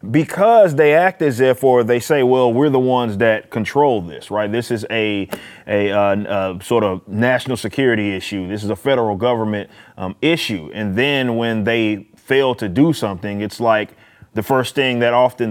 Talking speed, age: 190 wpm, 20-39